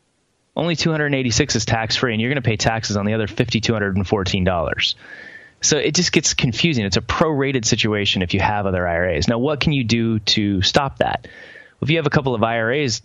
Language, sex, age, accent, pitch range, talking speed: English, male, 20-39, American, 100-125 Hz, 200 wpm